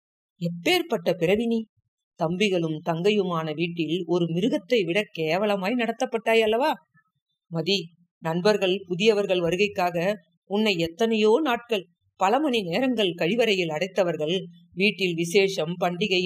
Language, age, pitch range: Tamil, 50-69, 170-220 Hz